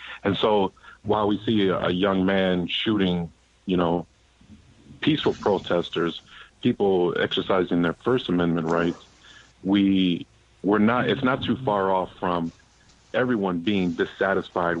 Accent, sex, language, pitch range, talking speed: American, male, English, 90-100 Hz, 125 wpm